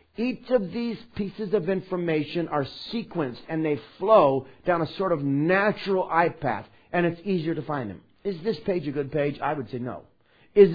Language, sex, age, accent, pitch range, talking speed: English, male, 50-69, American, 125-185 Hz, 195 wpm